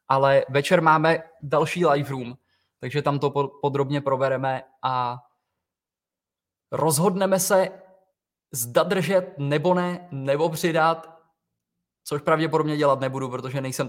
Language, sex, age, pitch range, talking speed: Czech, male, 20-39, 125-150 Hz, 110 wpm